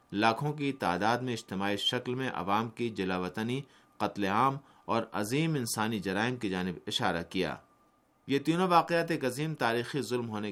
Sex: male